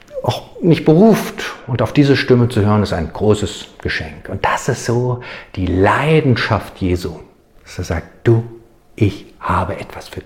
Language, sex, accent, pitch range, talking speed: German, male, German, 95-145 Hz, 165 wpm